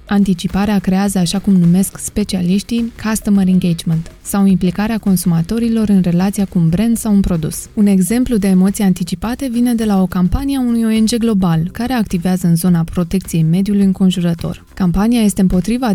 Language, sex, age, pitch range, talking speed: Romanian, female, 20-39, 180-215 Hz, 160 wpm